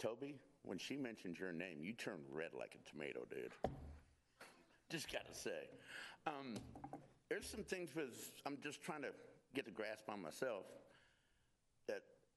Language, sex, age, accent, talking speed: English, male, 60-79, American, 155 wpm